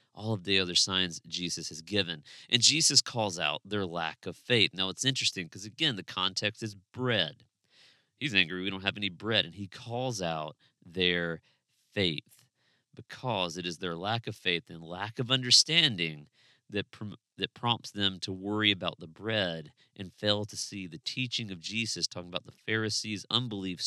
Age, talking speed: 40-59, 180 wpm